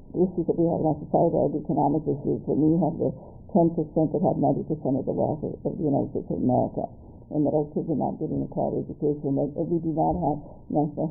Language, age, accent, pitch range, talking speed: English, 60-79, American, 150-170 Hz, 255 wpm